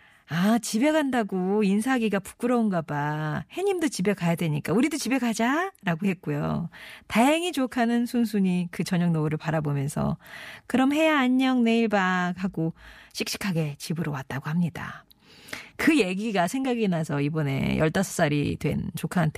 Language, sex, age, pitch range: Korean, female, 40-59, 165-225 Hz